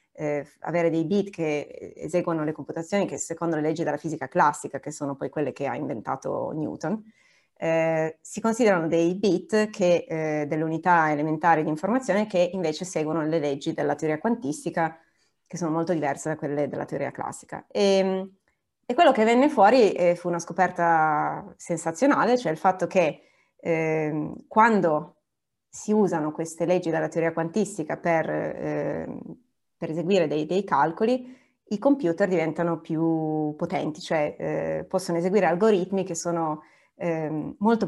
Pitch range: 155-195 Hz